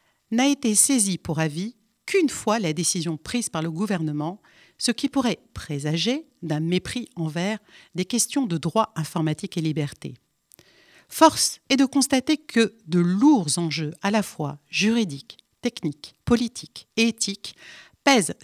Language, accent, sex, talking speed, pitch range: French, French, female, 145 wpm, 160-230 Hz